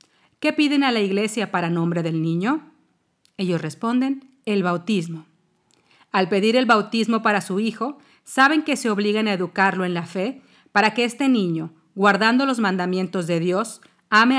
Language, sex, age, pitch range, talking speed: Spanish, female, 40-59, 180-240 Hz, 165 wpm